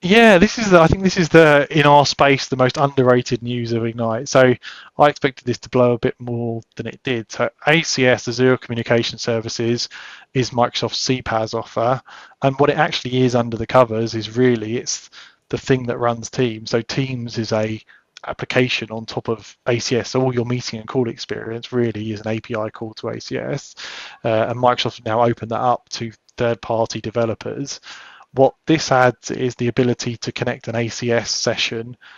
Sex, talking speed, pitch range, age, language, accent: male, 185 wpm, 115-130 Hz, 20-39, English, British